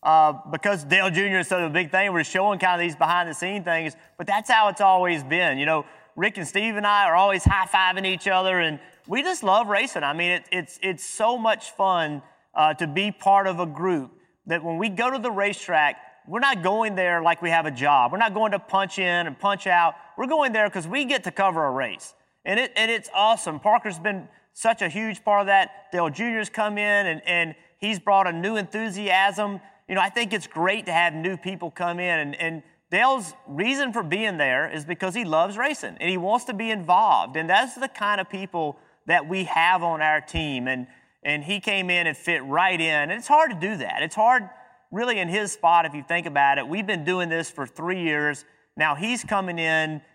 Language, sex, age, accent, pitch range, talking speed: English, male, 30-49, American, 170-210 Hz, 230 wpm